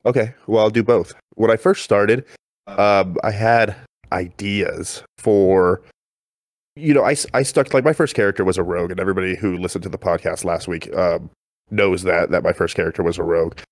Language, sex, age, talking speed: English, male, 30-49, 195 wpm